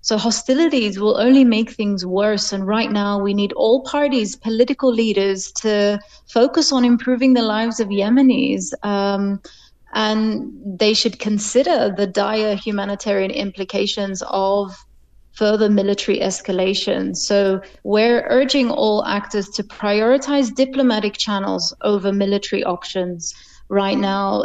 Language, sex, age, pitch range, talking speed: English, female, 30-49, 195-225 Hz, 125 wpm